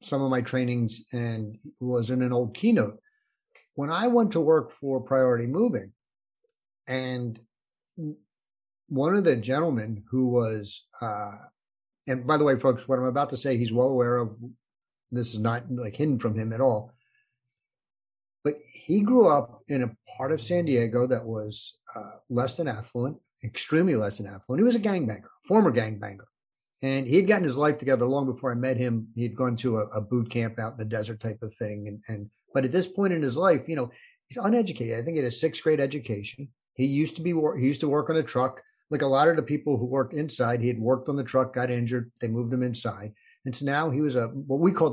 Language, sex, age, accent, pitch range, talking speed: English, male, 50-69, American, 115-150 Hz, 220 wpm